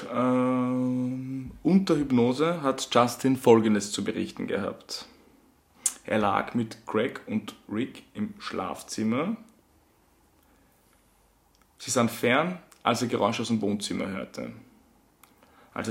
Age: 20-39